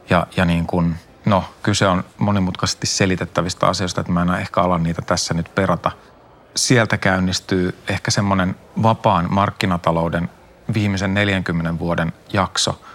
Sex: male